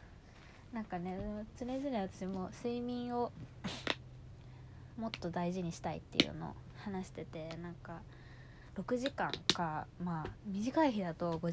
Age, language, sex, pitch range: 20-39, Japanese, female, 165-245 Hz